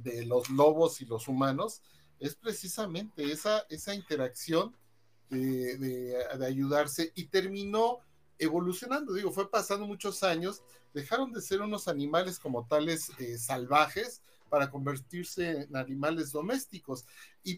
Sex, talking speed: male, 130 wpm